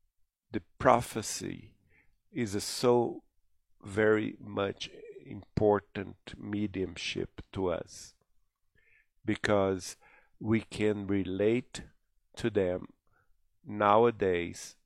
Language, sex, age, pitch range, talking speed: English, male, 50-69, 95-125 Hz, 75 wpm